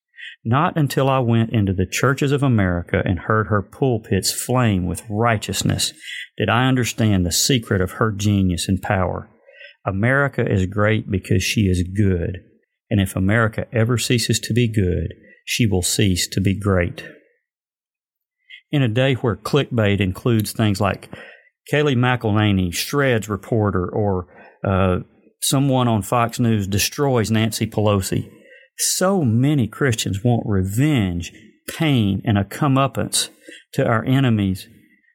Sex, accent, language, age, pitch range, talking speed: male, American, English, 40-59, 100-140 Hz, 135 wpm